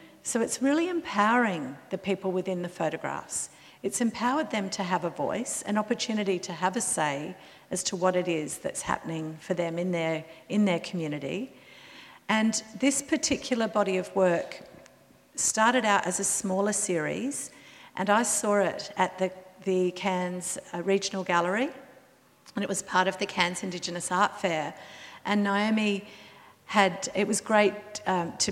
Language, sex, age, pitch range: English, female, 50-69, 180-220 Hz